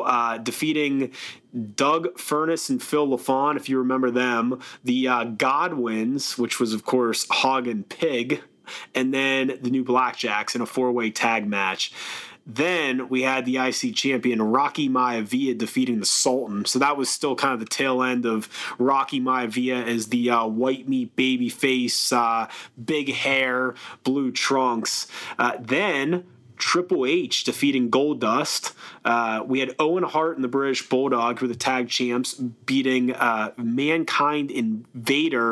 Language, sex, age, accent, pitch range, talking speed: English, male, 30-49, American, 125-145 Hz, 150 wpm